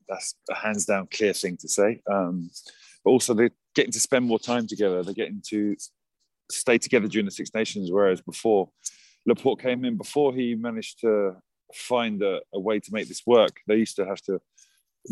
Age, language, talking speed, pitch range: 30-49, English, 200 wpm, 105-135 Hz